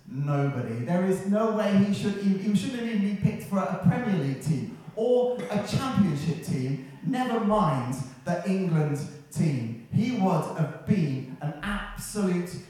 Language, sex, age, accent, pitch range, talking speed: English, male, 30-49, British, 135-180 Hz, 165 wpm